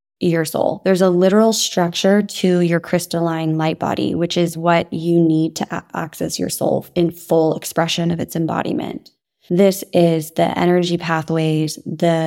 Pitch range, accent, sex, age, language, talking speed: 165-180 Hz, American, female, 20-39, English, 155 wpm